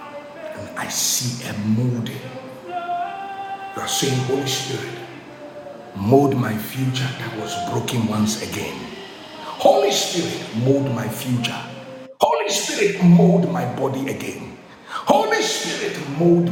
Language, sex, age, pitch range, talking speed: English, male, 60-79, 135-220 Hz, 115 wpm